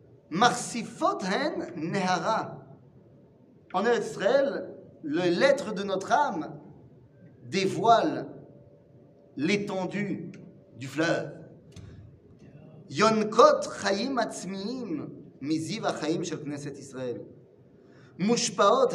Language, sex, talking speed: French, male, 75 wpm